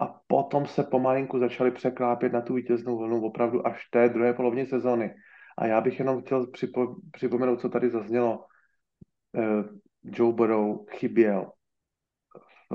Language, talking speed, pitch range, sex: Slovak, 145 wpm, 120-140 Hz, male